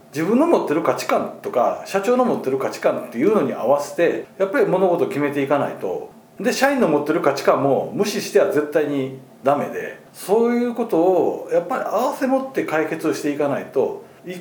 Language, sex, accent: Japanese, male, native